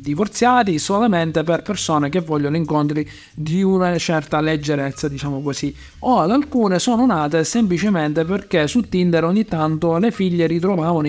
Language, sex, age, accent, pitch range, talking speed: Italian, male, 50-69, native, 165-210 Hz, 145 wpm